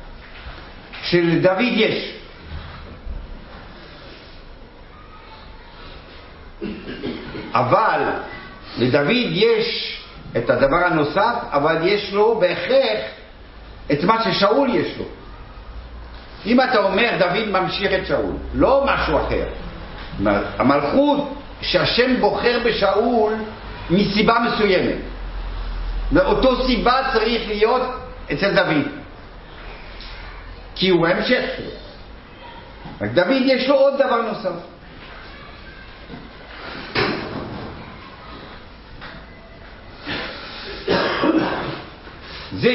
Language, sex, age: Hebrew, male, 60-79